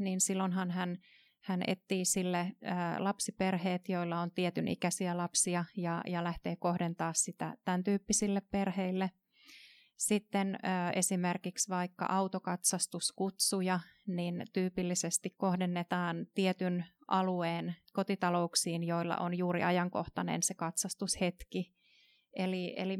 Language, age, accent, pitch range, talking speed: Finnish, 30-49, native, 175-195 Hz, 100 wpm